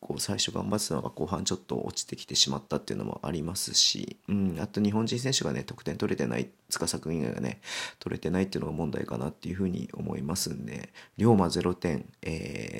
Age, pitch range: 40-59, 90-115 Hz